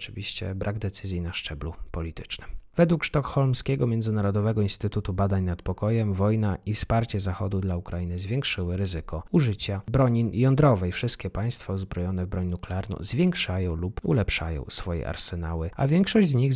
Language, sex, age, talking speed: Polish, male, 30-49, 140 wpm